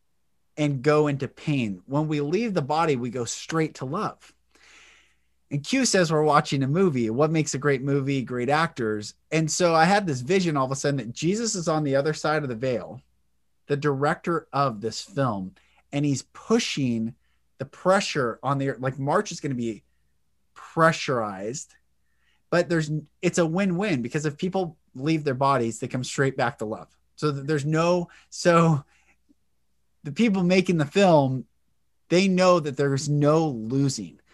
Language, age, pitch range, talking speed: English, 30-49, 130-165 Hz, 175 wpm